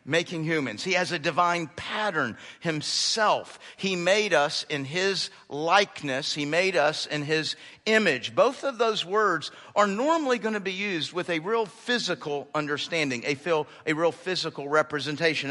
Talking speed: 160 wpm